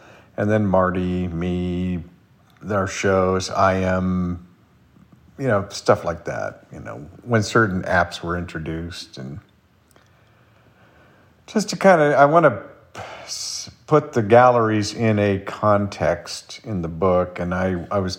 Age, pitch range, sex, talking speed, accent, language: 50-69, 90-105 Hz, male, 135 wpm, American, English